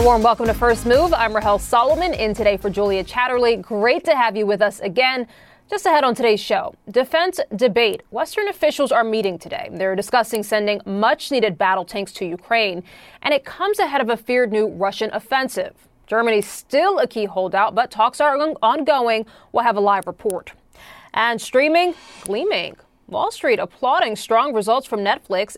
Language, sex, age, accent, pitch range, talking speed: English, female, 20-39, American, 205-270 Hz, 175 wpm